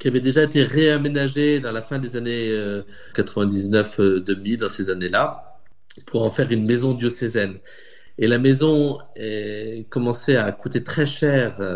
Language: French